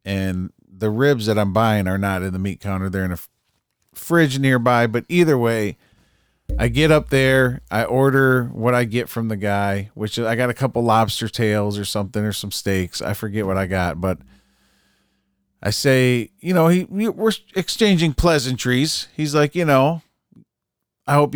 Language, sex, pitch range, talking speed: English, male, 100-135 Hz, 180 wpm